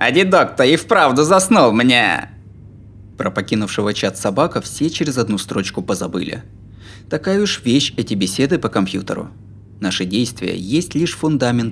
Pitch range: 100-145 Hz